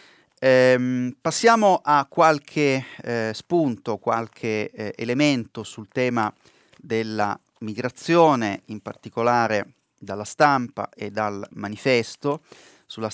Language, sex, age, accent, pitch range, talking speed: Italian, male, 30-49, native, 100-120 Hz, 95 wpm